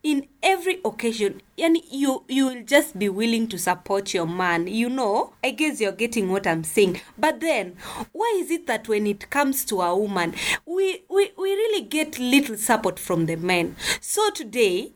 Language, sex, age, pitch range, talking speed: English, female, 20-39, 195-315 Hz, 175 wpm